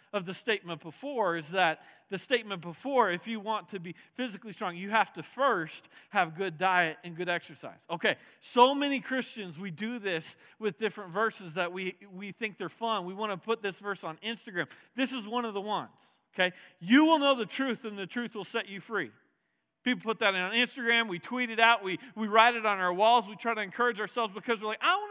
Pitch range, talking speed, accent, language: 205-275 Hz, 230 wpm, American, English